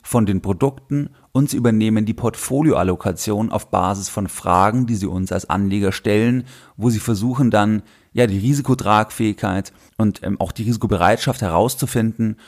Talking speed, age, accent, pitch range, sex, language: 150 wpm, 30-49, German, 95-115 Hz, male, German